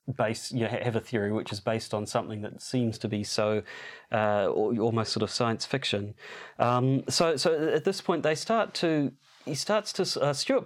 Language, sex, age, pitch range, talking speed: English, male, 30-49, 115-150 Hz, 205 wpm